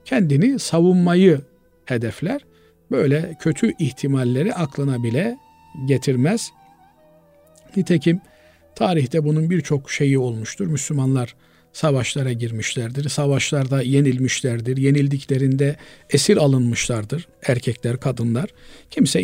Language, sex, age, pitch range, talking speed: Turkish, male, 50-69, 130-165 Hz, 80 wpm